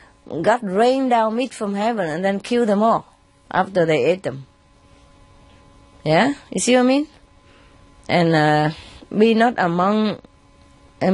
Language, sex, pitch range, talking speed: English, female, 130-200 Hz, 145 wpm